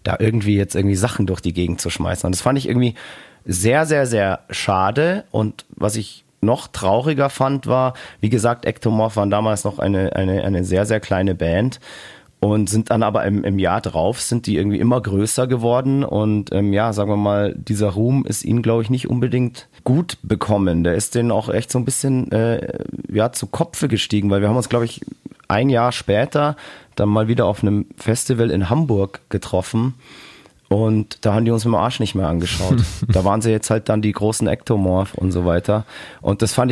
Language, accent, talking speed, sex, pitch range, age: German, German, 205 wpm, male, 95-120 Hz, 30-49